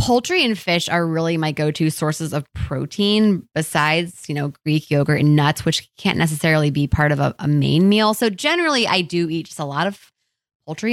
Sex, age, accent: female, 20-39, American